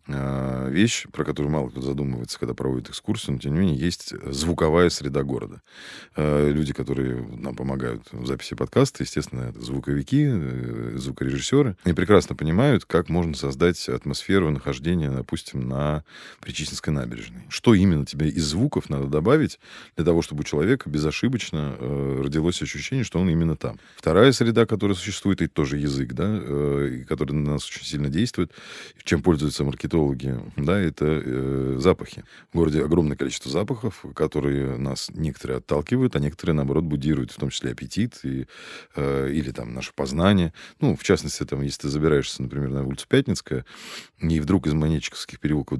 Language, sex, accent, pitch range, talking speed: Russian, male, native, 70-90 Hz, 155 wpm